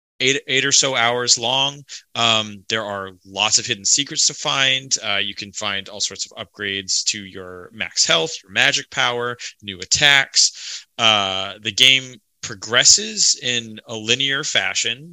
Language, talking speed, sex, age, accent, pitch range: English, 160 wpm, male, 30-49, American, 100-120 Hz